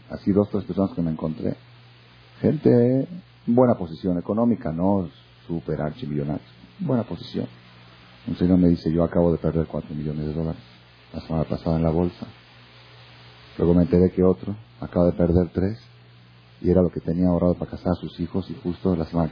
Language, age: Spanish, 40-59